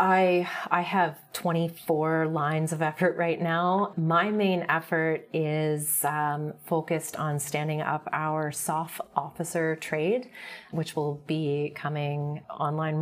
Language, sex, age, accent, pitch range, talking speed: English, female, 30-49, American, 150-165 Hz, 125 wpm